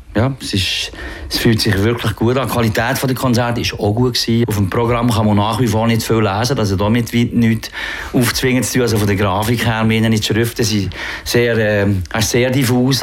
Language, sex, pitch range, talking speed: German, male, 100-115 Hz, 210 wpm